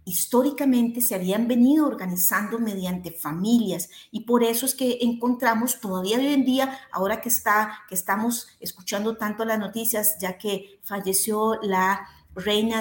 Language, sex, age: Spanish, female, 40-59